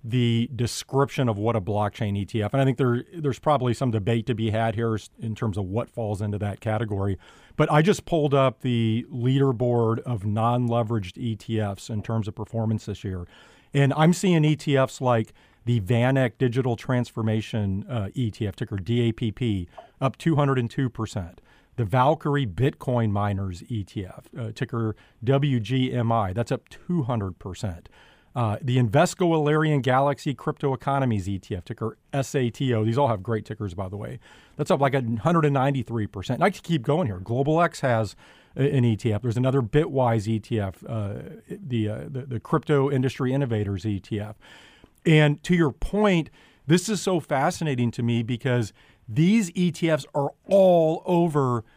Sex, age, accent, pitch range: male, 40-59, American, 110-140 Hz